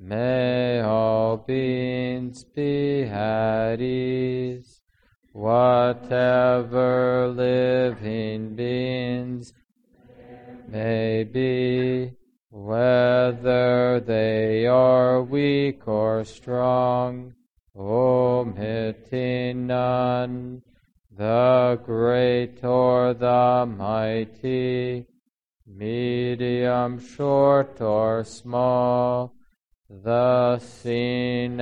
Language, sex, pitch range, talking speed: English, male, 110-125 Hz, 55 wpm